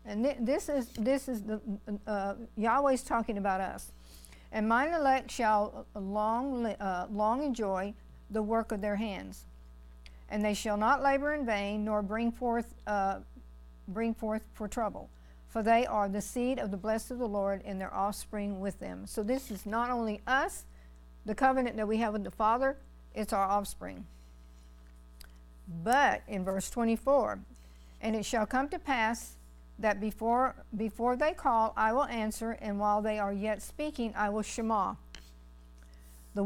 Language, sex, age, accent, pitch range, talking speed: English, female, 60-79, American, 195-235 Hz, 165 wpm